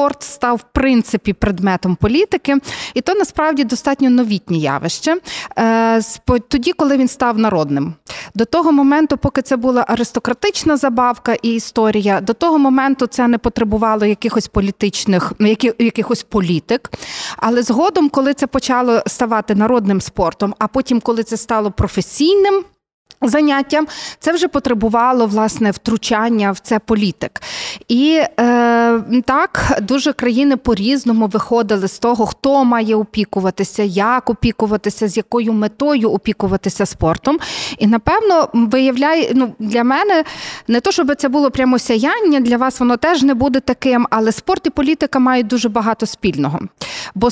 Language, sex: Ukrainian, female